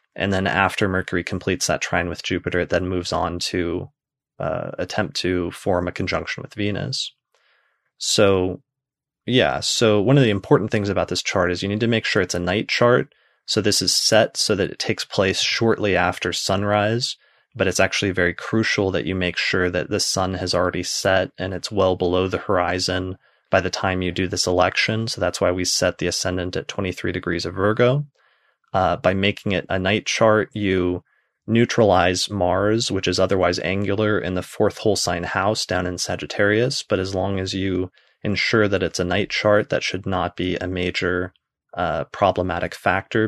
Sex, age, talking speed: male, 20-39, 190 wpm